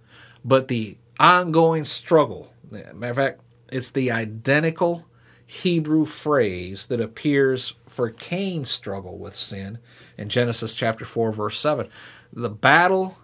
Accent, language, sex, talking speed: American, English, male, 120 wpm